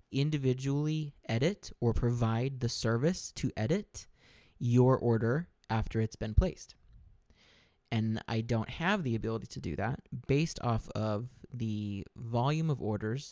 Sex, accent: male, American